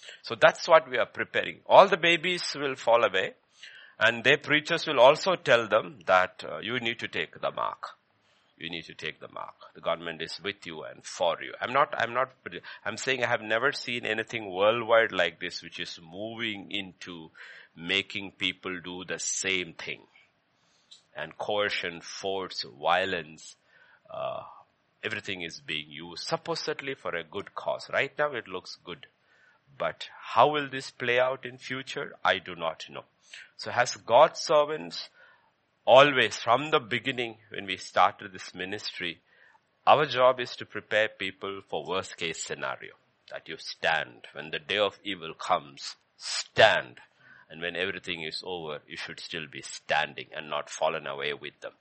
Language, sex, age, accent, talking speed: English, male, 50-69, Indian, 170 wpm